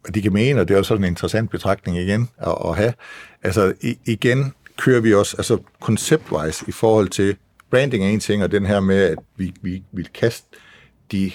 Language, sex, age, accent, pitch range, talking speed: Danish, male, 60-79, native, 95-115 Hz, 205 wpm